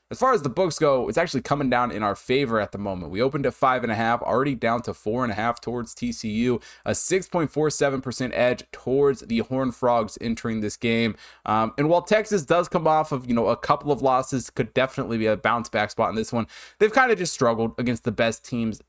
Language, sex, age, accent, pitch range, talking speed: English, male, 20-39, American, 115-145 Hz, 240 wpm